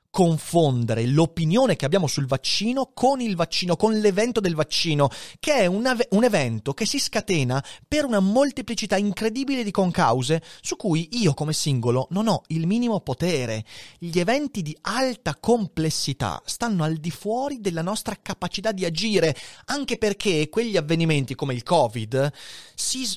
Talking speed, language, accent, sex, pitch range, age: 155 wpm, Italian, native, male, 135-210 Hz, 30-49